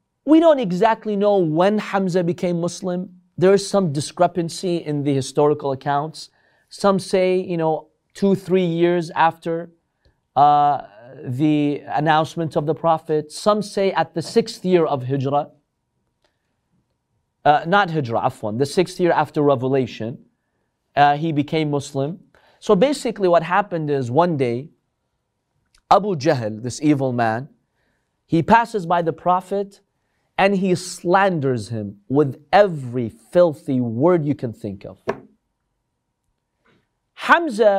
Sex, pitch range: male, 145-195 Hz